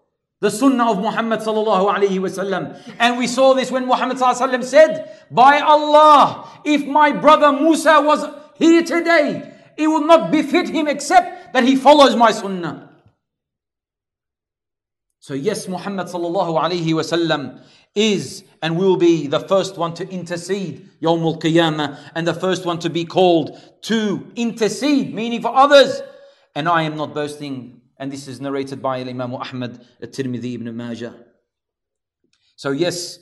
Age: 40-59